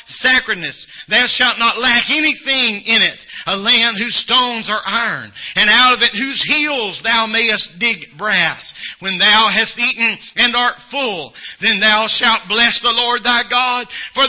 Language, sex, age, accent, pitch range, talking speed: English, male, 40-59, American, 215-250 Hz, 170 wpm